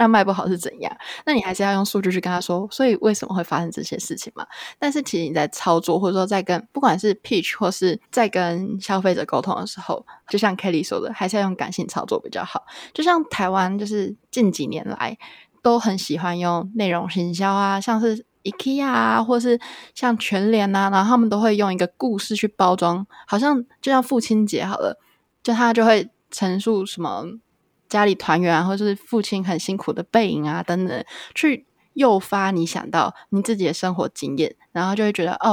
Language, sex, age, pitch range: Chinese, female, 20-39, 180-225 Hz